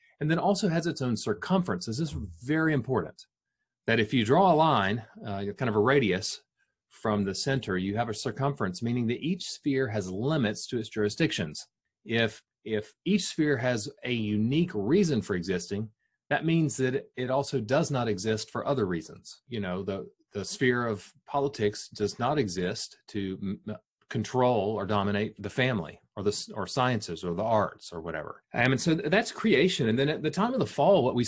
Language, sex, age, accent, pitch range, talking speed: English, male, 30-49, American, 105-140 Hz, 190 wpm